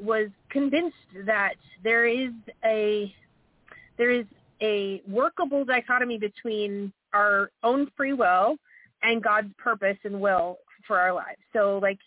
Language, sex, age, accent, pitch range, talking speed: English, female, 30-49, American, 205-245 Hz, 130 wpm